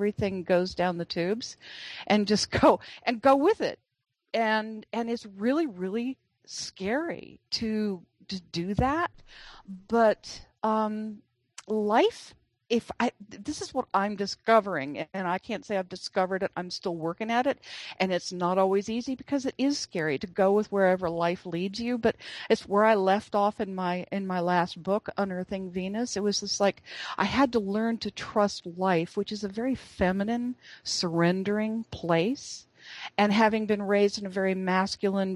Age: 40-59